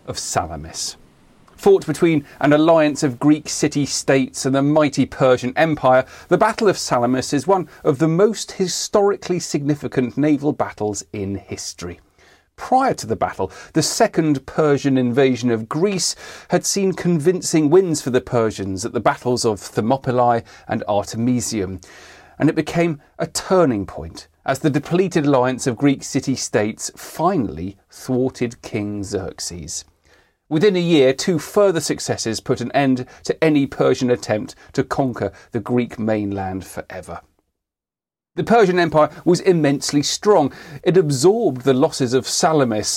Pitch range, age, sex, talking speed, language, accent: 120-160 Hz, 40-59, male, 140 wpm, English, British